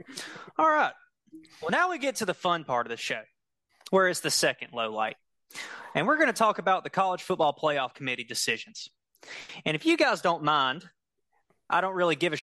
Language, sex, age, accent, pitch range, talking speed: English, male, 20-39, American, 140-200 Hz, 195 wpm